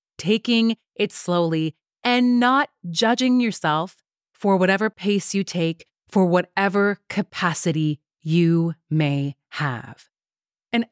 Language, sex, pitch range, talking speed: English, female, 165-230 Hz, 105 wpm